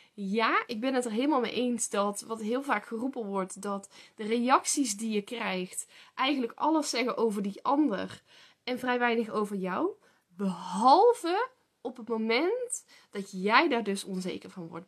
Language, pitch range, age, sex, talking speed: Dutch, 210-320 Hz, 10-29, female, 170 wpm